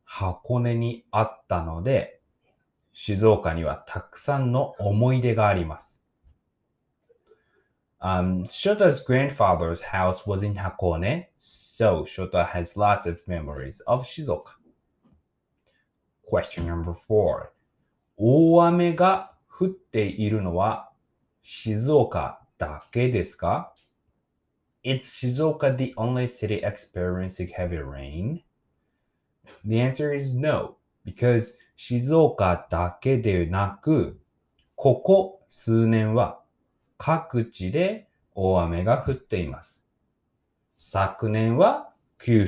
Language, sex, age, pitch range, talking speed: English, male, 20-39, 90-125 Hz, 50 wpm